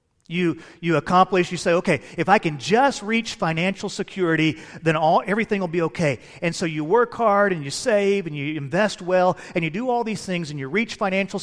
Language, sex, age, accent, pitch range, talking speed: English, male, 40-59, American, 160-210 Hz, 215 wpm